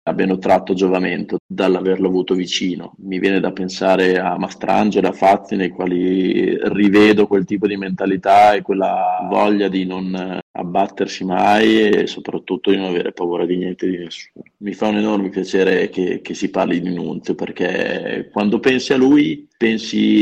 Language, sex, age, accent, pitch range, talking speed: Italian, male, 30-49, native, 95-110 Hz, 165 wpm